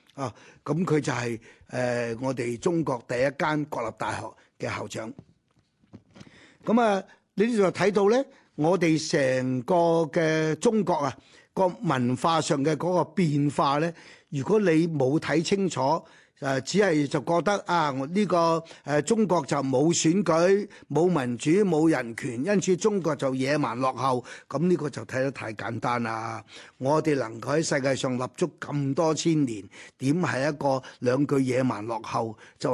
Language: Chinese